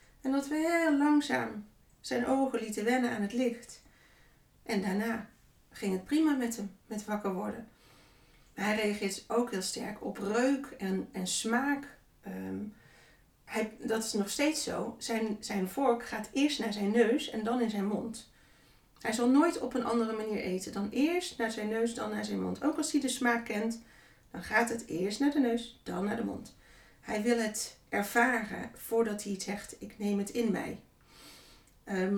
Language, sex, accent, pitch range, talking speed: Dutch, female, Dutch, 205-250 Hz, 185 wpm